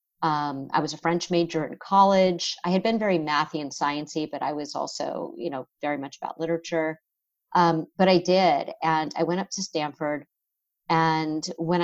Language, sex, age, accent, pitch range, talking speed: English, female, 40-59, American, 150-175 Hz, 190 wpm